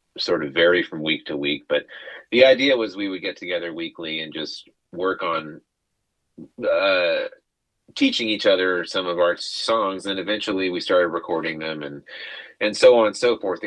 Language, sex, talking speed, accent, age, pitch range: English, male, 180 wpm, American, 30-49, 85-110 Hz